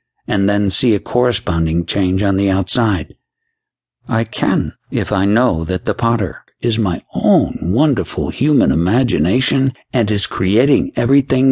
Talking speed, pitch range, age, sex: 140 wpm, 95-120 Hz, 60-79, male